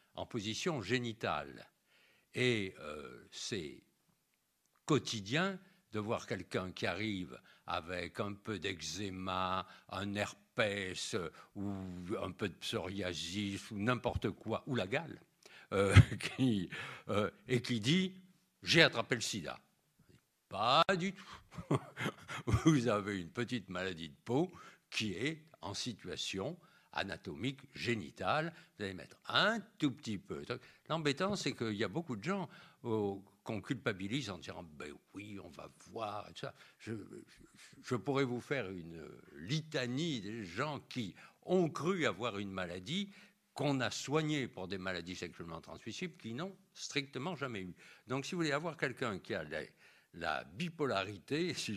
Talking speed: 145 wpm